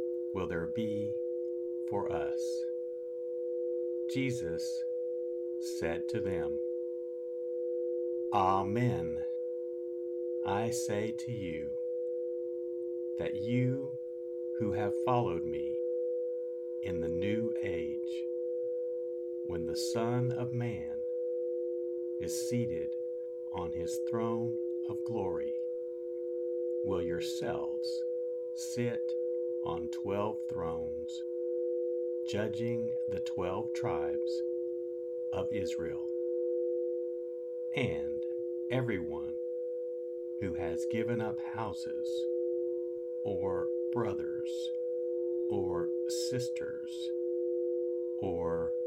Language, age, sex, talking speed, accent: English, 60-79, male, 75 wpm, American